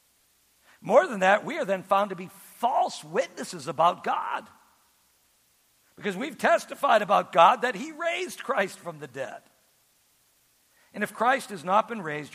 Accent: American